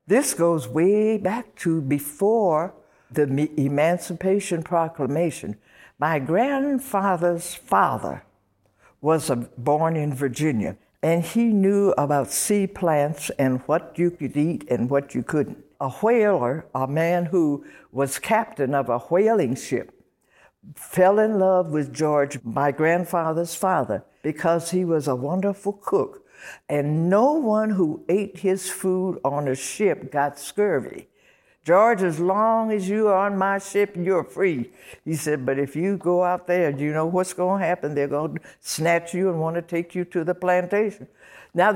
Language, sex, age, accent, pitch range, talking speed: English, female, 60-79, American, 145-190 Hz, 155 wpm